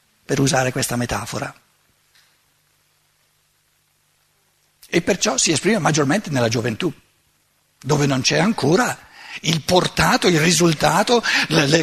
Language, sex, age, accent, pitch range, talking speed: Italian, male, 60-79, native, 160-245 Hz, 105 wpm